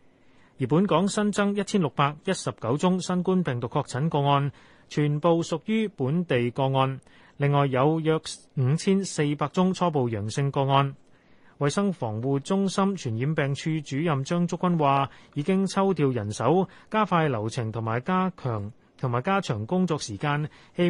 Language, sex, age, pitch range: Chinese, male, 30-49, 130-180 Hz